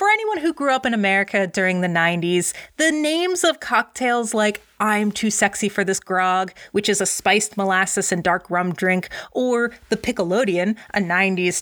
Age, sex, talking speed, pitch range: 30-49, female, 180 wpm, 195-275 Hz